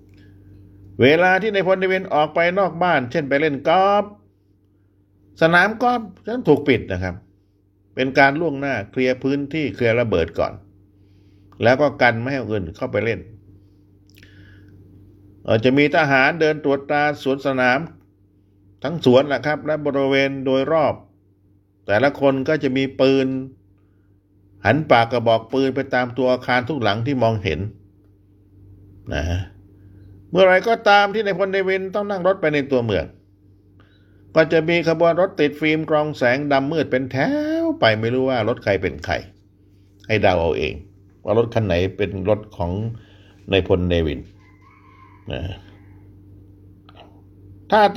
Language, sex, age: Thai, male, 50-69